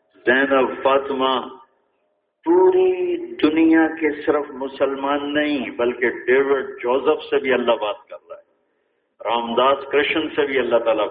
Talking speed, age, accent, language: 130 wpm, 50-69, Indian, English